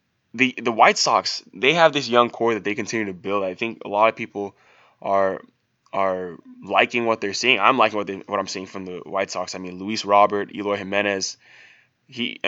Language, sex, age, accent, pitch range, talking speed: English, male, 10-29, American, 100-115 Hz, 210 wpm